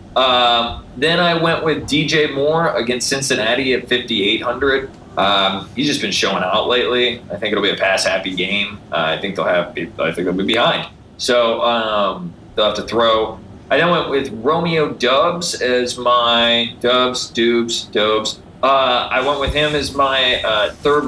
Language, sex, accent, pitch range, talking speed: English, male, American, 115-140 Hz, 175 wpm